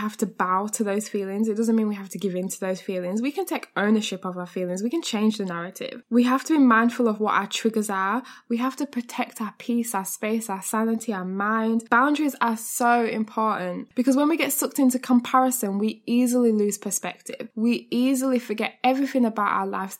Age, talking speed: 10-29, 220 wpm